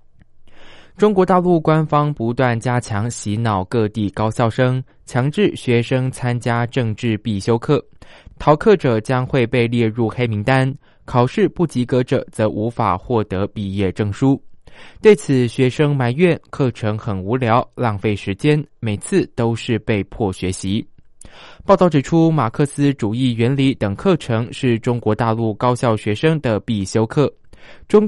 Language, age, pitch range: Chinese, 20-39, 110-140 Hz